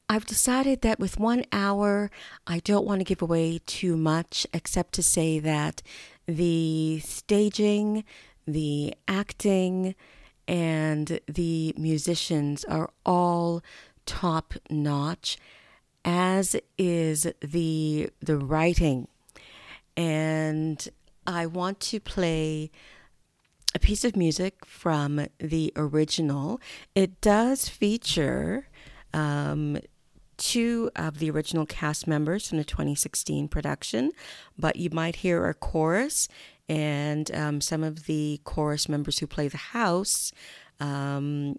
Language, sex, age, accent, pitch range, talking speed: English, female, 40-59, American, 145-180 Hz, 110 wpm